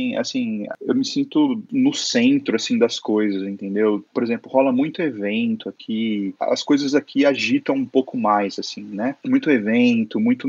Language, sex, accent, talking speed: Portuguese, male, Brazilian, 160 wpm